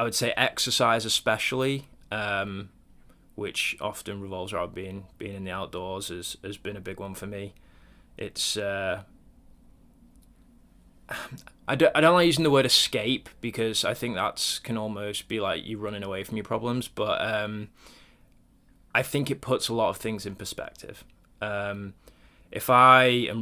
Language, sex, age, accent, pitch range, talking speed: English, male, 20-39, British, 95-110 Hz, 160 wpm